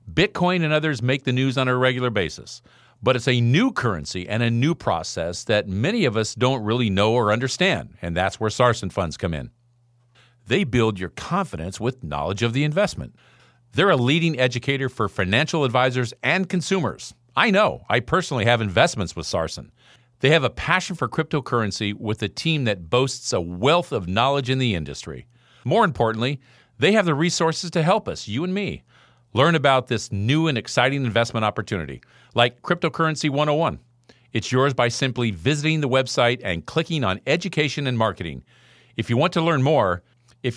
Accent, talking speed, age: American, 180 wpm, 50-69